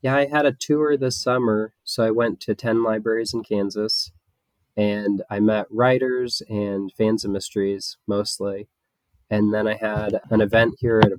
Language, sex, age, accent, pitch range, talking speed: English, male, 20-39, American, 95-115 Hz, 175 wpm